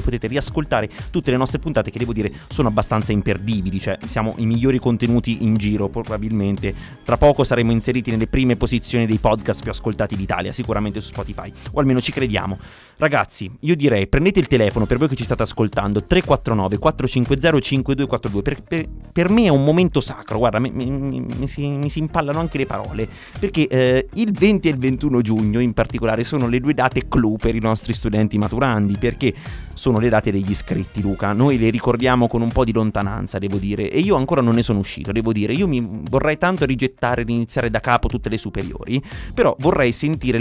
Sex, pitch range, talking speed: male, 110-135 Hz, 200 wpm